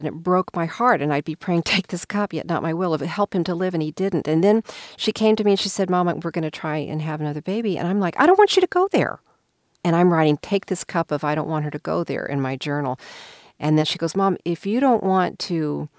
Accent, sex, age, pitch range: American, female, 50-69, 160-210 Hz